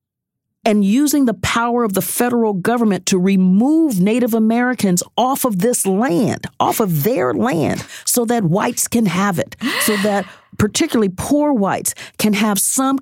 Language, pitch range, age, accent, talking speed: English, 195-245 Hz, 40-59, American, 155 wpm